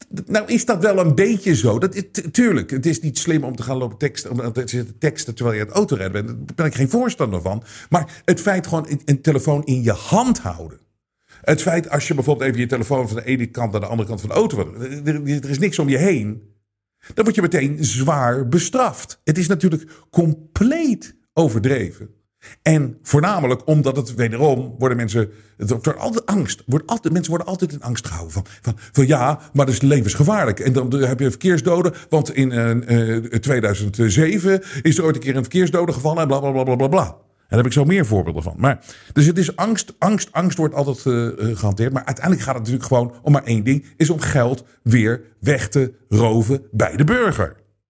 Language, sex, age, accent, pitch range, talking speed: Dutch, male, 50-69, Dutch, 115-165 Hz, 210 wpm